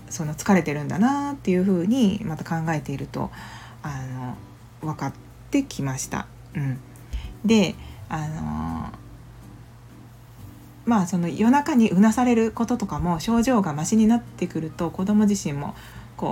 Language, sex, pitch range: Japanese, female, 150-220 Hz